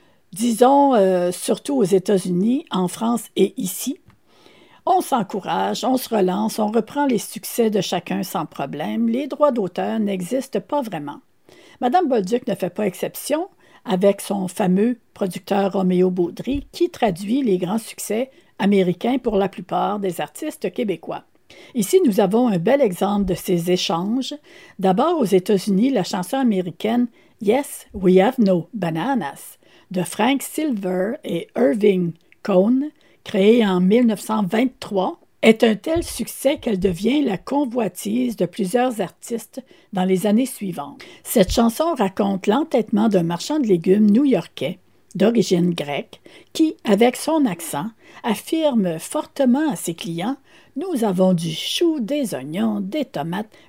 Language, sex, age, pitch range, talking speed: French, female, 60-79, 185-255 Hz, 140 wpm